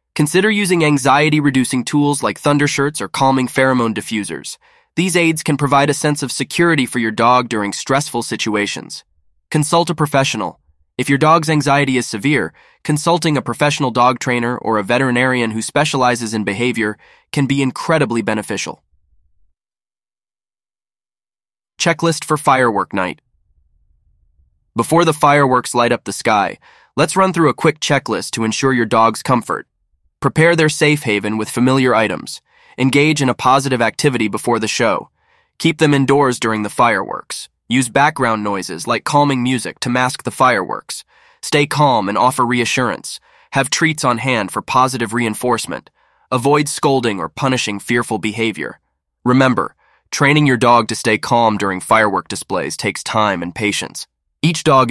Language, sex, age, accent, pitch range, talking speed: English, male, 20-39, American, 110-145 Hz, 150 wpm